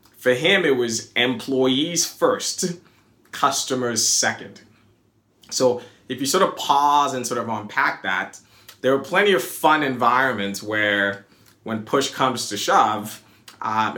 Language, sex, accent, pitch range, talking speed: English, male, American, 105-130 Hz, 135 wpm